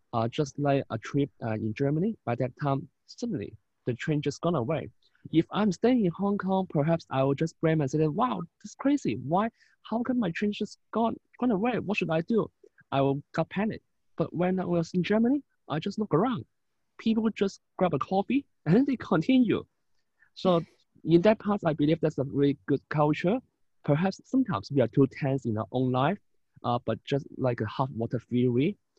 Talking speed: 205 wpm